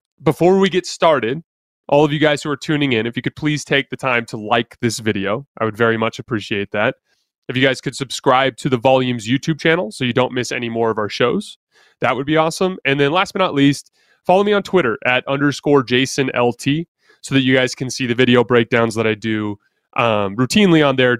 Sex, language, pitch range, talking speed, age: male, English, 115-160 Hz, 230 wpm, 20-39